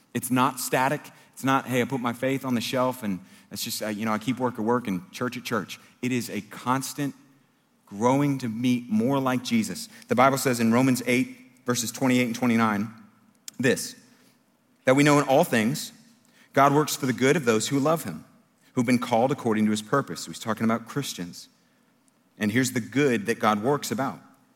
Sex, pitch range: male, 115-165 Hz